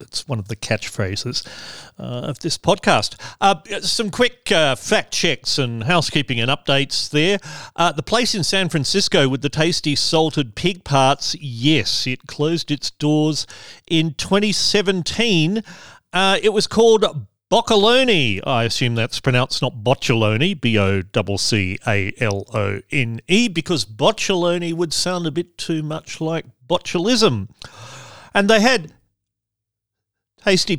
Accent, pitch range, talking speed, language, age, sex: Australian, 120-190 Hz, 125 wpm, English, 40-59, male